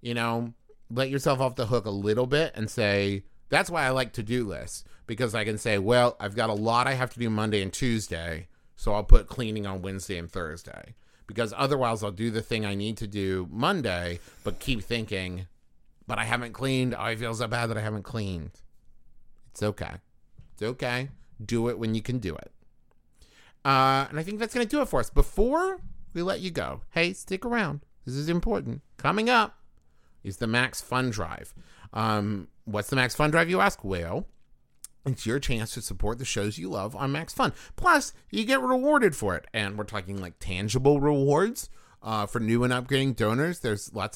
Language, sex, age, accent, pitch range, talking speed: English, male, 30-49, American, 100-140 Hz, 205 wpm